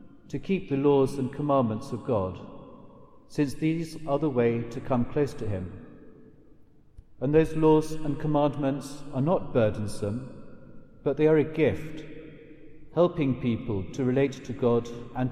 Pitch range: 125-150 Hz